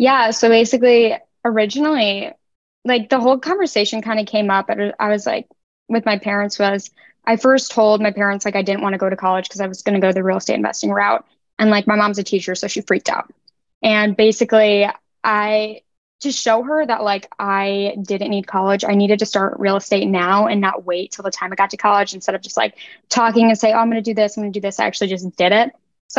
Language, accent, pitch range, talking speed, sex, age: English, American, 195-225 Hz, 240 wpm, female, 10-29